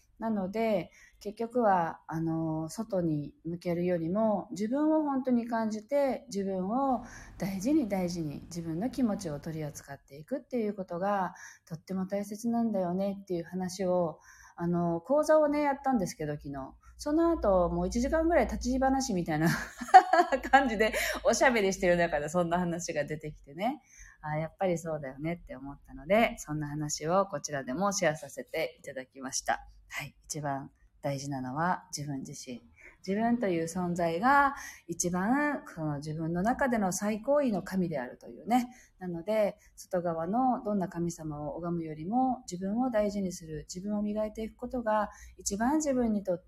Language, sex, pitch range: Japanese, female, 160-245 Hz